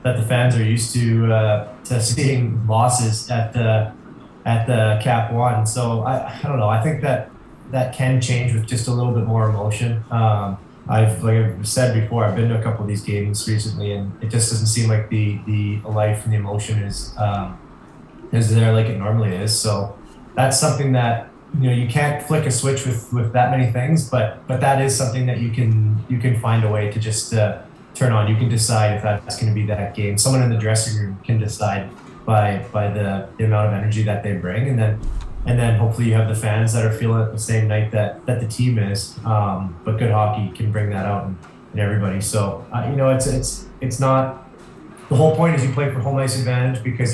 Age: 20-39